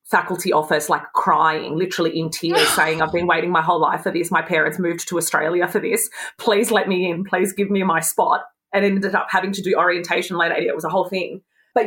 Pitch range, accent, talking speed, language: 165-210 Hz, Australian, 235 wpm, English